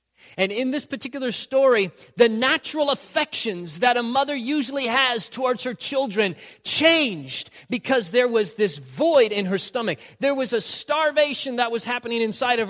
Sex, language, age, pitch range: male, English, 30-49, 195-280 Hz